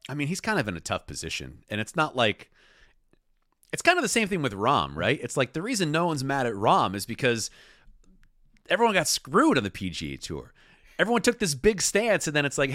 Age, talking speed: 40-59, 230 wpm